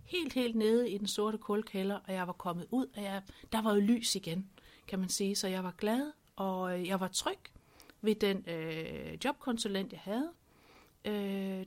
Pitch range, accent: 185-235 Hz, native